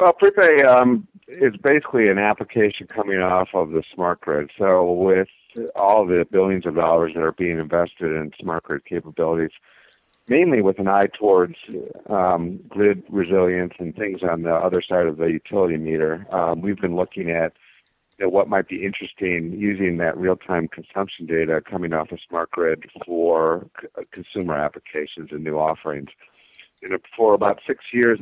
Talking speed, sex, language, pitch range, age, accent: 170 wpm, male, English, 80-95 Hz, 50-69, American